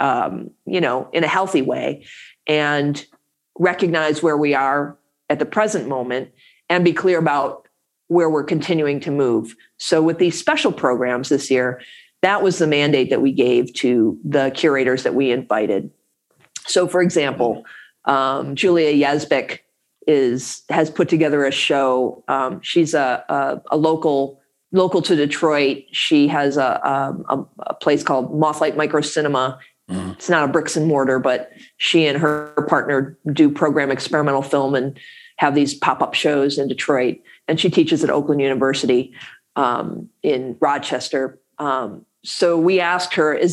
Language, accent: English, American